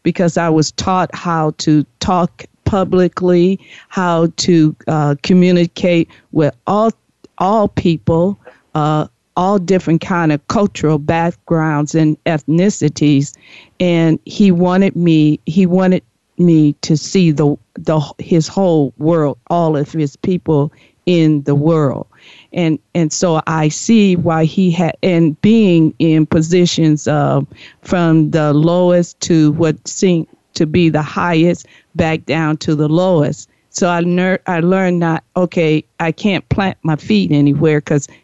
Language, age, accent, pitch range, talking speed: English, 50-69, American, 155-180 Hz, 140 wpm